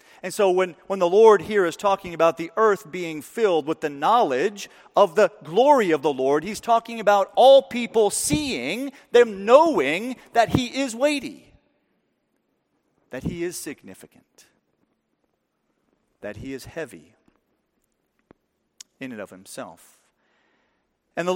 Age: 40-59